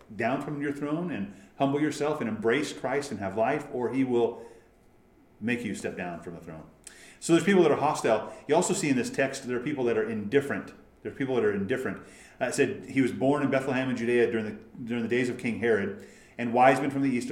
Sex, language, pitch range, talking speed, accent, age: male, English, 115-155 Hz, 245 wpm, American, 40-59